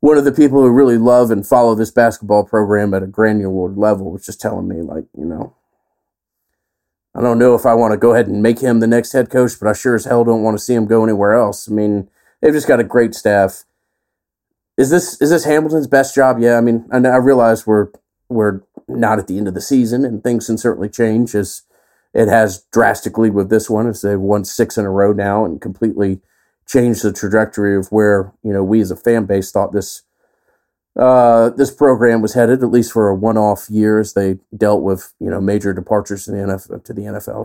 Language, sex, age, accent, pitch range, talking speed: English, male, 40-59, American, 105-120 Hz, 230 wpm